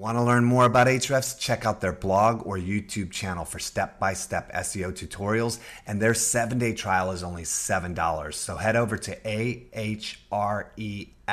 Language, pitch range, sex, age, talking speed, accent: English, 90-120 Hz, male, 30-49, 155 wpm, American